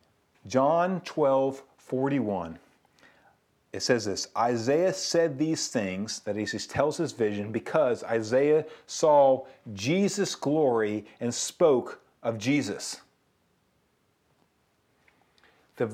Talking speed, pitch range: 95 wpm, 140-210 Hz